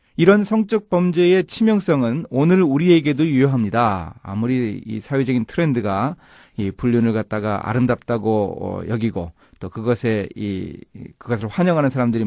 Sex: male